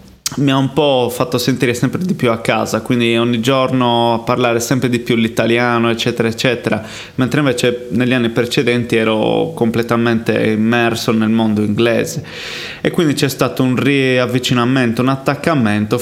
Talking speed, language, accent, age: 155 wpm, Italian, native, 20-39